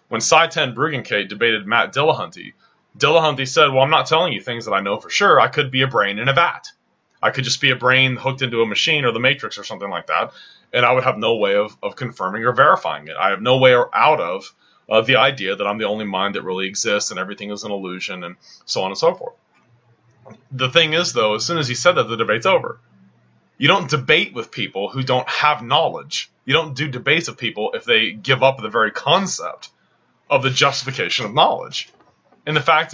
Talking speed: 230 wpm